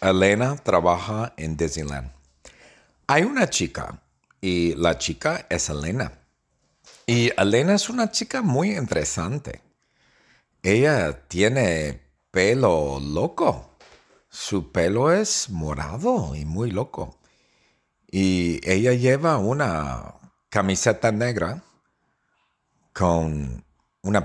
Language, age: English, 50-69